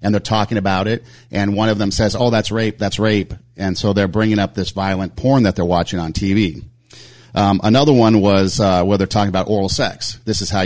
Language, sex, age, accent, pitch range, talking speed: English, male, 40-59, American, 90-110 Hz, 235 wpm